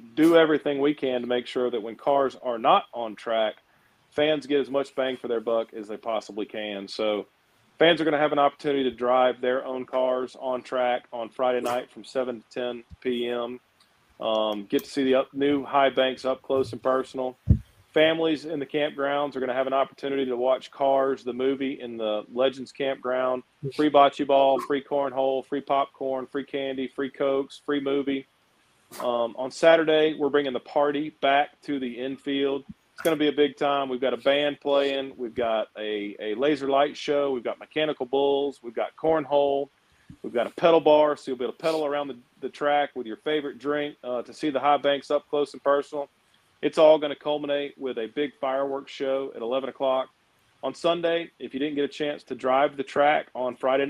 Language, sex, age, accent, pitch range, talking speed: English, male, 40-59, American, 125-145 Hz, 205 wpm